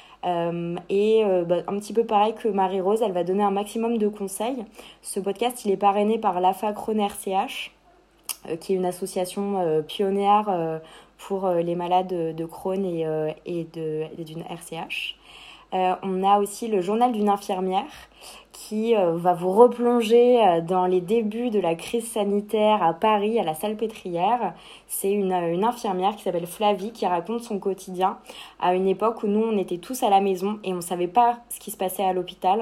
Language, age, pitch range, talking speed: French, 20-39, 180-210 Hz, 195 wpm